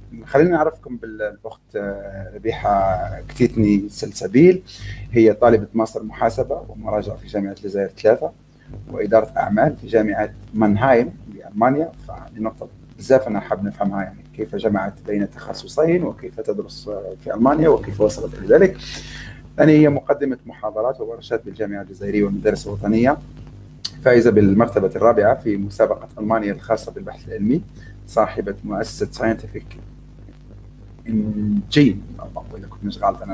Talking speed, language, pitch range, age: 115 wpm, Arabic, 100-120 Hz, 30-49